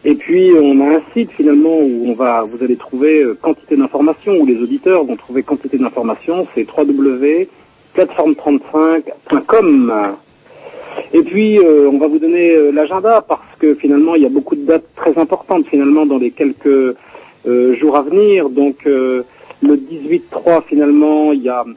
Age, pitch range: 50-69, 135-215 Hz